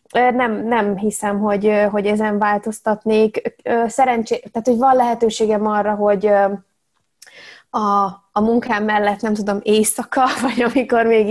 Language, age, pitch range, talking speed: Hungarian, 20-39, 205-235 Hz, 125 wpm